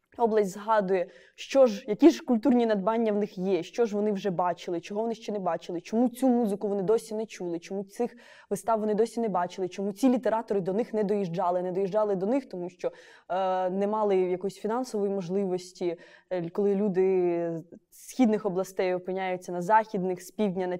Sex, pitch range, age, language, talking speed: female, 190-235 Hz, 20-39, Ukrainian, 190 wpm